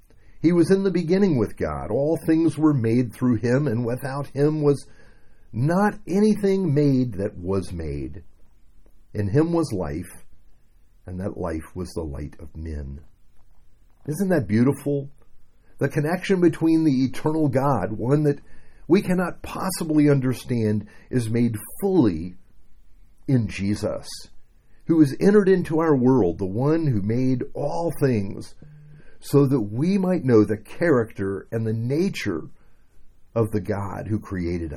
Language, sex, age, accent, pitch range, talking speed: English, male, 50-69, American, 105-150 Hz, 140 wpm